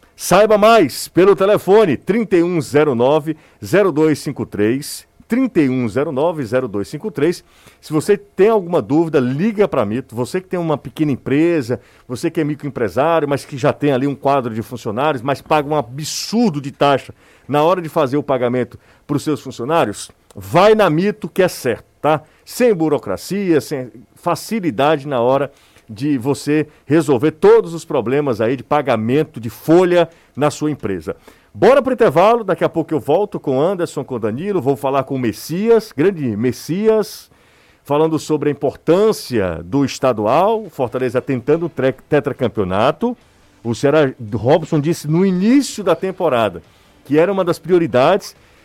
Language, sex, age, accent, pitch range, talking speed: Portuguese, male, 50-69, Brazilian, 130-170 Hz, 150 wpm